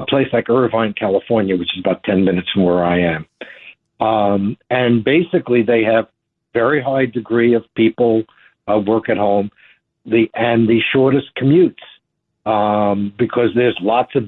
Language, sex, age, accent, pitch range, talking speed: English, male, 60-79, American, 105-140 Hz, 160 wpm